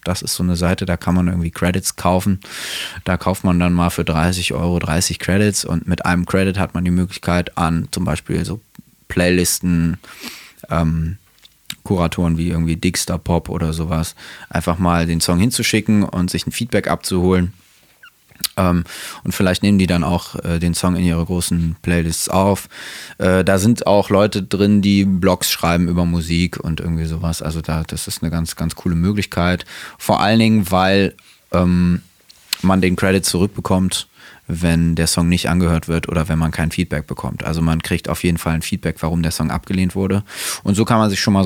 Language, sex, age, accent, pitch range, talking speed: German, male, 20-39, German, 85-95 Hz, 185 wpm